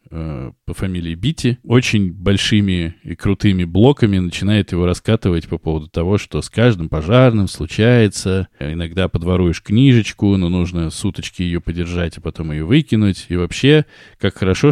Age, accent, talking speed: 20-39, native, 145 wpm